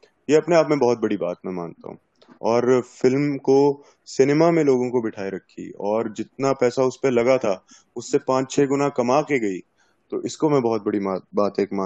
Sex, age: male, 20-39